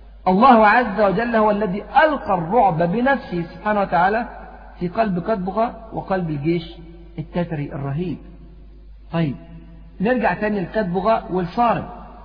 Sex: male